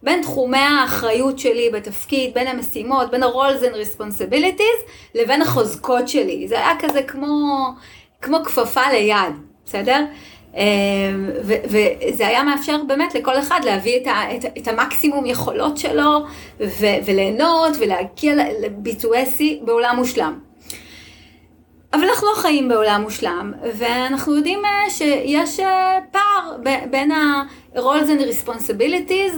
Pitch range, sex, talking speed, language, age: 245-325 Hz, female, 110 wpm, Hebrew, 30-49